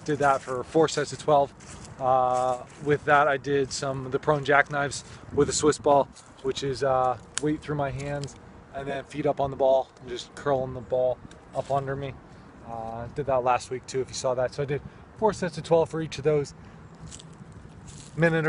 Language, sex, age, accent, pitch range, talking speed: English, male, 20-39, American, 130-150 Hz, 210 wpm